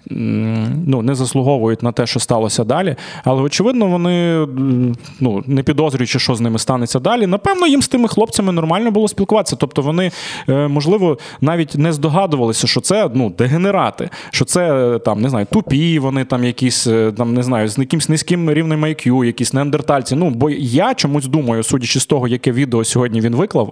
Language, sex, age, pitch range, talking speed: Ukrainian, male, 20-39, 120-160 Hz, 175 wpm